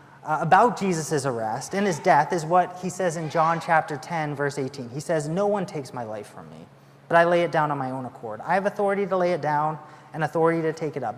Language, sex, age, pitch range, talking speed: English, male, 30-49, 145-180 Hz, 260 wpm